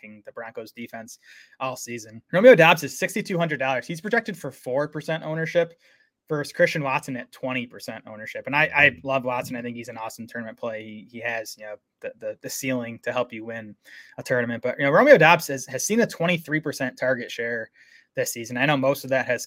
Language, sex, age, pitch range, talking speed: English, male, 20-39, 120-145 Hz, 205 wpm